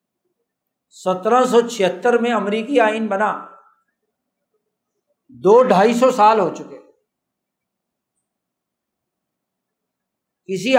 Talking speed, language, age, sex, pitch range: 80 wpm, Urdu, 60-79, male, 180-240 Hz